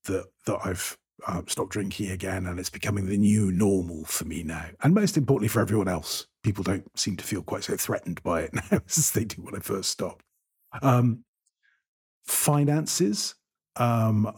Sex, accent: male, British